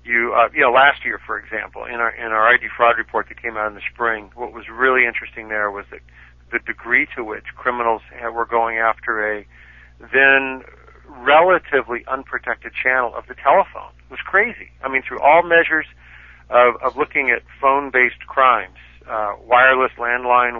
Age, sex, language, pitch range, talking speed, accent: 50-69, male, English, 105-130 Hz, 180 wpm, American